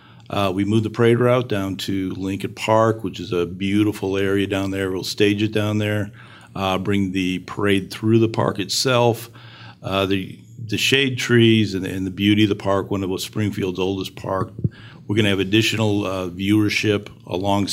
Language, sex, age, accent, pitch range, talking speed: English, male, 50-69, American, 95-115 Hz, 190 wpm